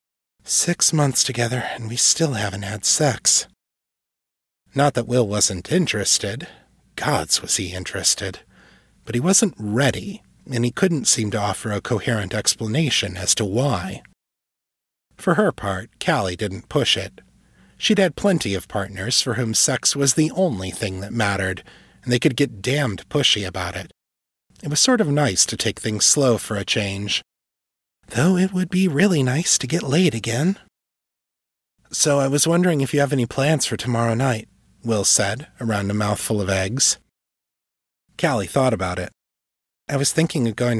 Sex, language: male, English